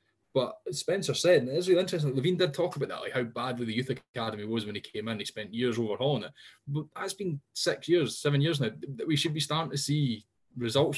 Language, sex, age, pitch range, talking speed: English, male, 10-29, 110-140 Hz, 240 wpm